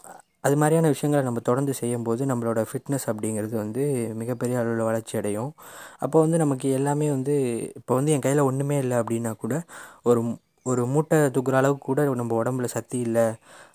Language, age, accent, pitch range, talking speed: Tamil, 20-39, native, 110-135 Hz, 160 wpm